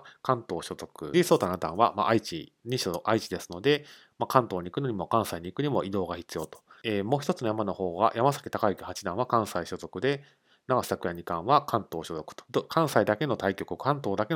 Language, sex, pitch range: Japanese, male, 95-130 Hz